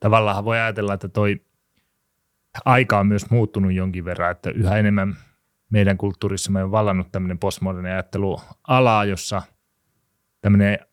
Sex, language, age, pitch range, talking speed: male, Finnish, 30-49, 90-105 Hz, 125 wpm